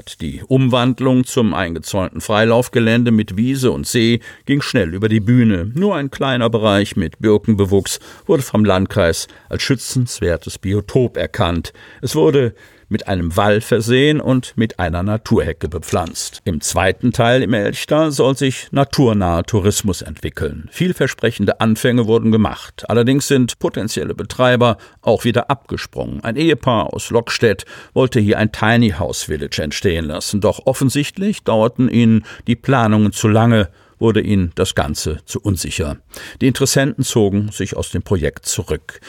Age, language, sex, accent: 50-69, German, male, German